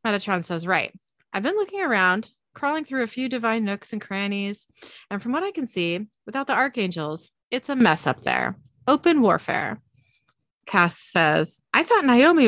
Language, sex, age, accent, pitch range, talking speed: English, female, 30-49, American, 180-245 Hz, 175 wpm